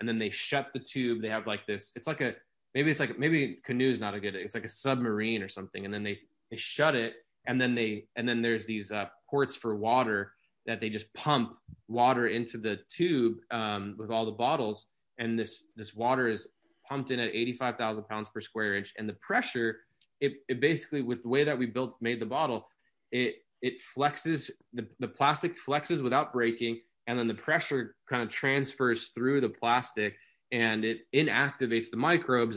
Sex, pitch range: male, 105-125 Hz